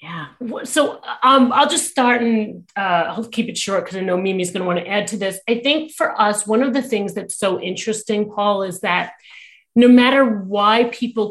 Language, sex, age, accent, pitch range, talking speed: English, female, 30-49, American, 180-230 Hz, 220 wpm